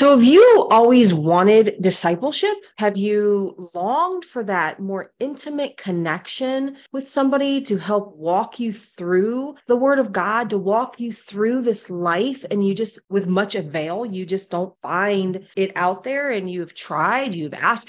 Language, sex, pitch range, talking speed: English, female, 175-235 Hz, 165 wpm